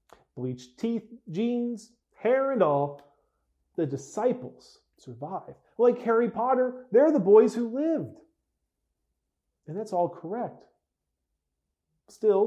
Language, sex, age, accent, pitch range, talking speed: English, male, 40-59, American, 140-205 Hz, 105 wpm